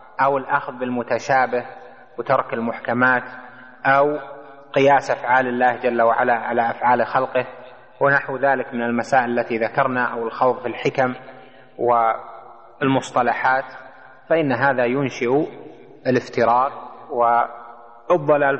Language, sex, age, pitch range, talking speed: Arabic, male, 30-49, 120-140 Hz, 95 wpm